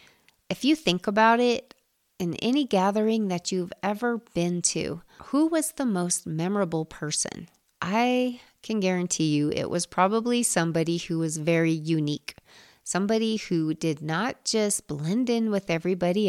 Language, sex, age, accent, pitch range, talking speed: English, female, 30-49, American, 170-225 Hz, 145 wpm